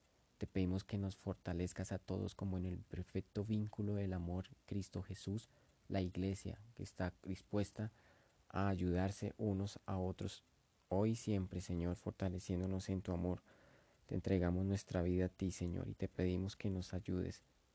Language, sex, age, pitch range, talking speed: English, male, 30-49, 90-100 Hz, 160 wpm